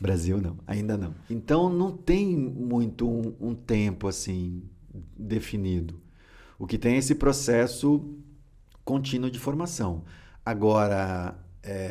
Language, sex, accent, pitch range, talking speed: Portuguese, male, Brazilian, 95-135 Hz, 120 wpm